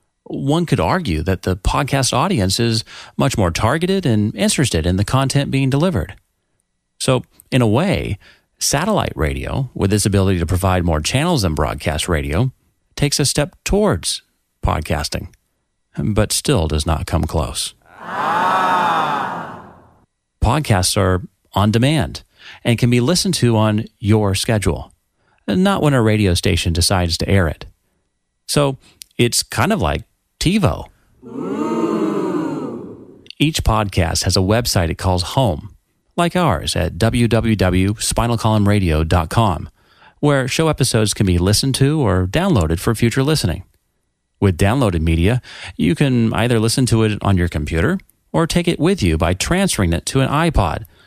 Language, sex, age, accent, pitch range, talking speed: English, male, 40-59, American, 90-130 Hz, 140 wpm